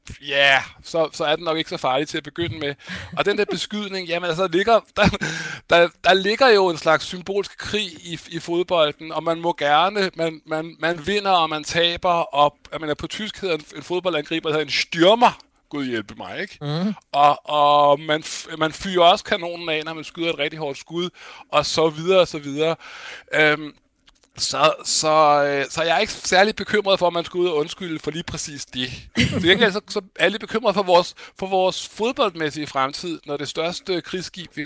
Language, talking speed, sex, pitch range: Danish, 210 wpm, male, 150-185 Hz